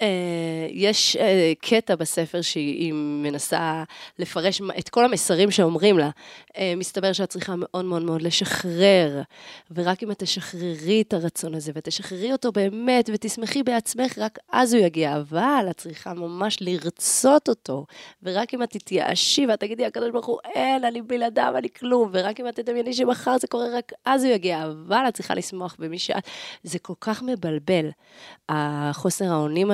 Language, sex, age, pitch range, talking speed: Hebrew, female, 20-39, 170-225 Hz, 160 wpm